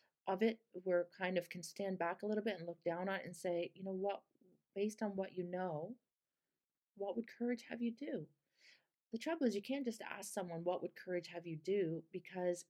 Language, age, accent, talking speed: English, 40-59, American, 220 wpm